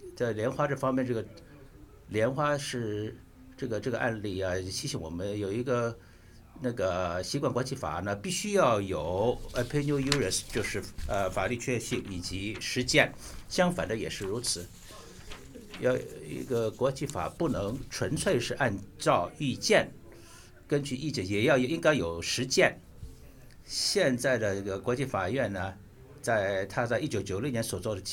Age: 60-79